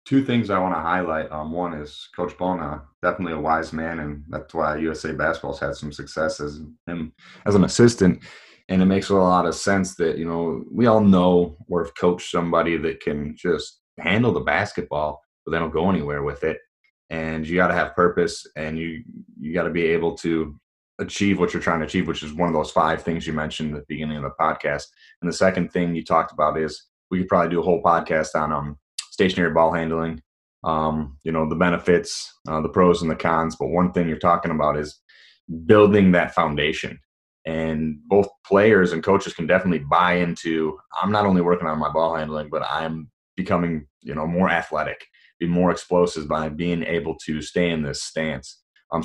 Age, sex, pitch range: 30-49, male, 80-90 Hz